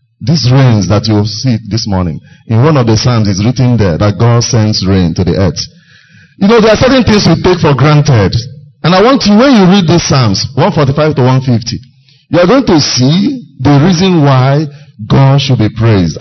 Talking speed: 210 wpm